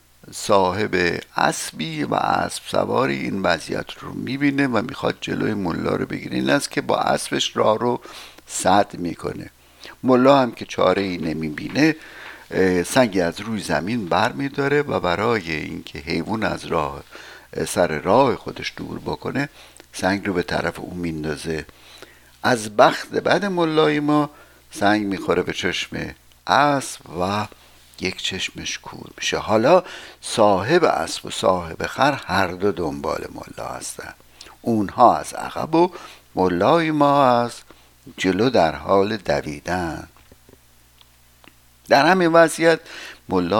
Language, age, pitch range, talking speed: Persian, 60-79, 85-140 Hz, 130 wpm